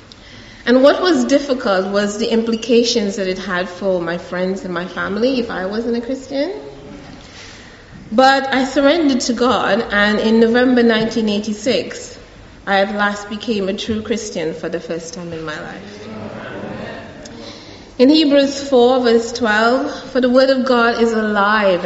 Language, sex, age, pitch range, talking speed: English, female, 30-49, 195-250 Hz, 155 wpm